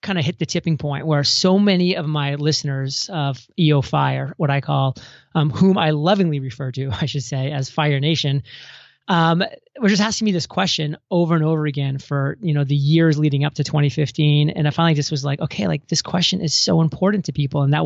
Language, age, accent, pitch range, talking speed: English, 30-49, American, 145-170 Hz, 225 wpm